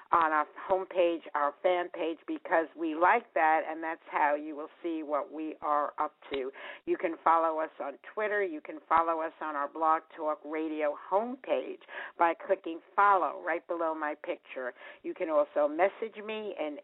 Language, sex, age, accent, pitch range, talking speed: English, female, 60-79, American, 150-195 Hz, 180 wpm